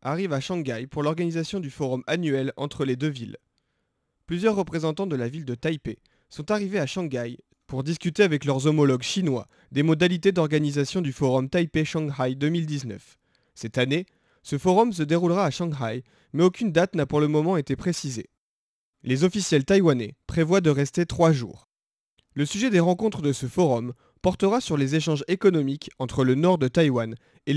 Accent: French